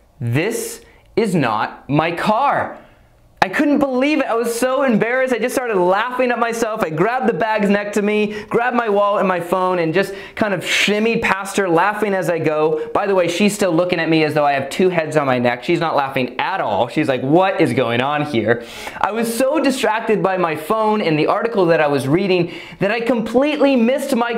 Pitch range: 155-225 Hz